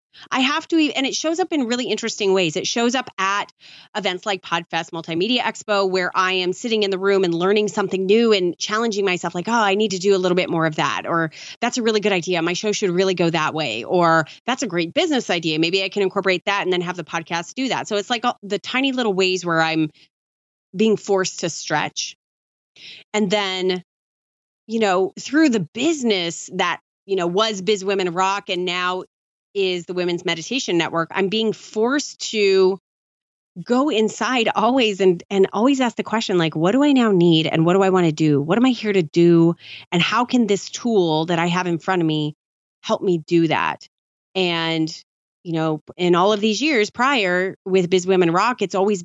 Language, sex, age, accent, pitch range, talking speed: English, female, 30-49, American, 170-215 Hz, 215 wpm